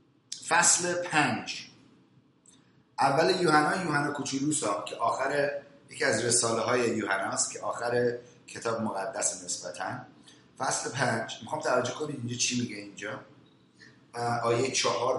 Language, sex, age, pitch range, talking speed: English, male, 30-49, 135-210 Hz, 120 wpm